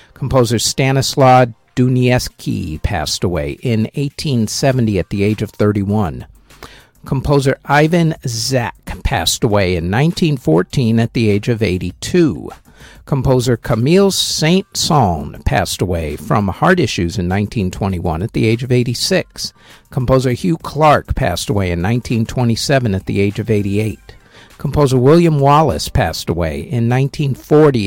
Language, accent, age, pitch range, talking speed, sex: English, American, 50-69, 110-145 Hz, 125 wpm, male